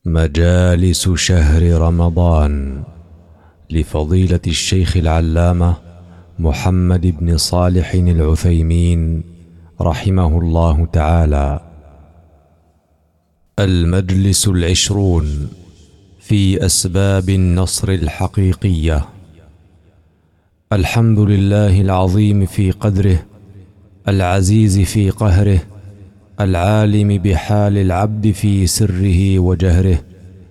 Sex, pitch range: male, 90-105 Hz